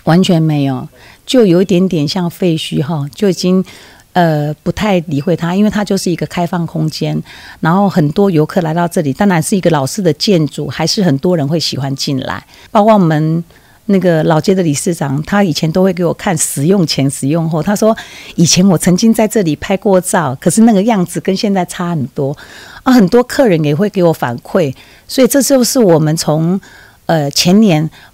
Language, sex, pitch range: Chinese, female, 155-200 Hz